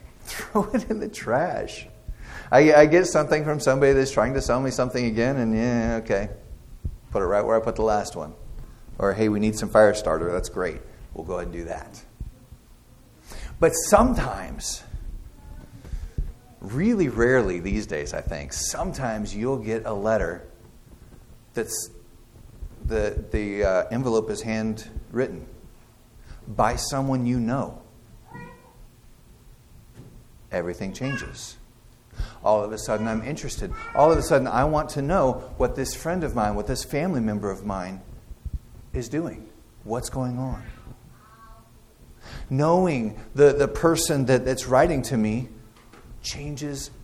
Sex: male